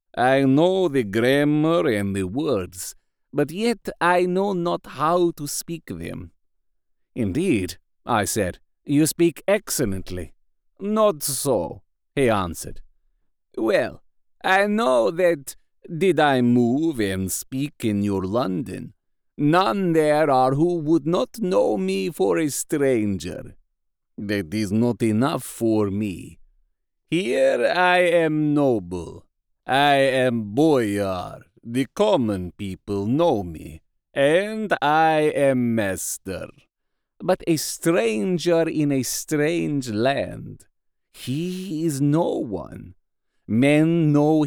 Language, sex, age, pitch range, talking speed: English, male, 50-69, 110-170 Hz, 115 wpm